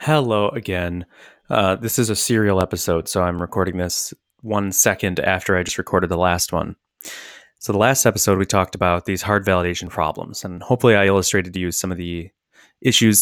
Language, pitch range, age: English, 90-120 Hz, 20-39